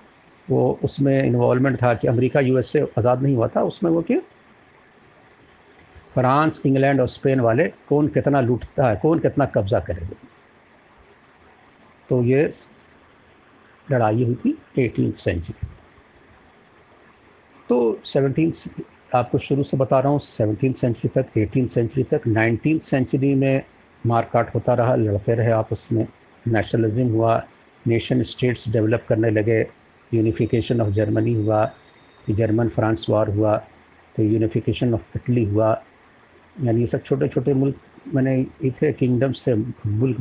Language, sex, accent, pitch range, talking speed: Hindi, male, native, 110-135 Hz, 135 wpm